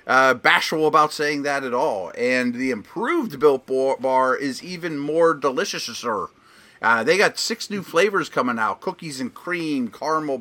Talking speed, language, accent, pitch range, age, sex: 175 wpm, English, American, 125-165 Hz, 30-49, male